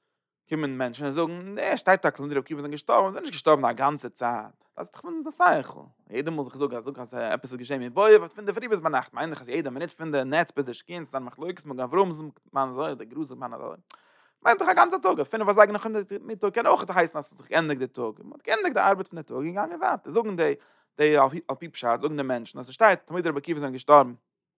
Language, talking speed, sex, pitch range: English, 55 wpm, male, 140-220 Hz